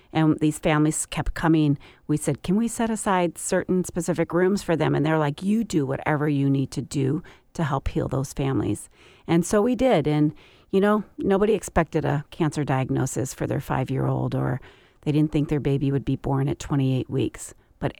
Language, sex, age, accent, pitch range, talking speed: English, female, 40-59, American, 140-180 Hz, 195 wpm